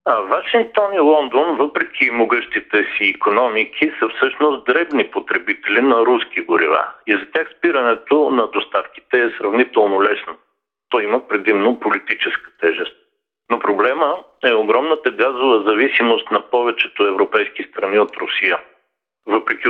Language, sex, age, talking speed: Bulgarian, male, 50-69, 130 wpm